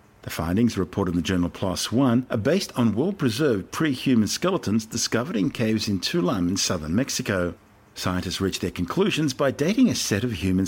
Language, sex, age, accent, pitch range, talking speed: English, male, 50-69, Australian, 95-125 Hz, 180 wpm